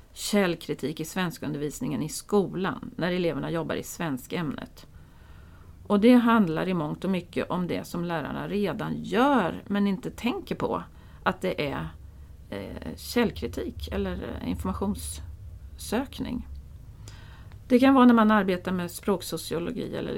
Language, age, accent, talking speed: English, 40-59, Swedish, 135 wpm